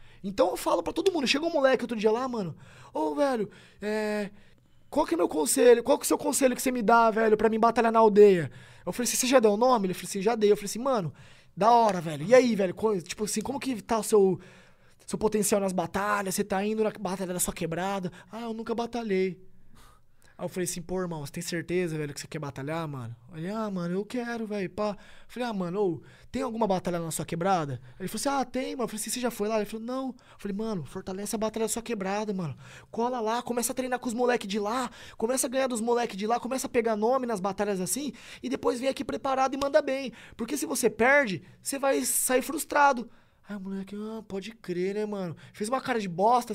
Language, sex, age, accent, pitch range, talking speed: Portuguese, male, 20-39, Brazilian, 185-240 Hz, 255 wpm